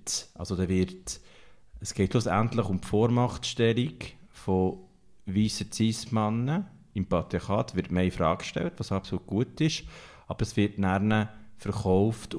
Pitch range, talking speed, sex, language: 95-115 Hz, 140 wpm, male, German